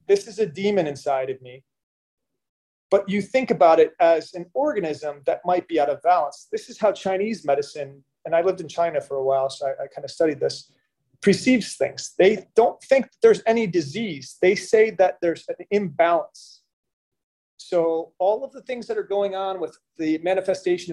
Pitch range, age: 155-205 Hz, 30-49